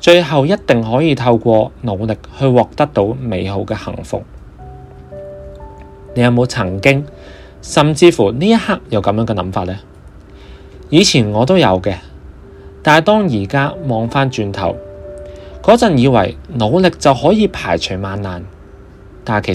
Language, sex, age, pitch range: Chinese, male, 30-49, 95-145 Hz